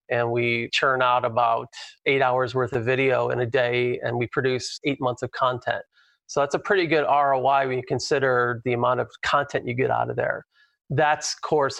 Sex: male